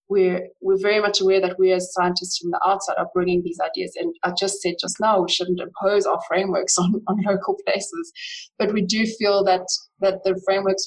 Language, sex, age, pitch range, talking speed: English, female, 20-39, 180-200 Hz, 215 wpm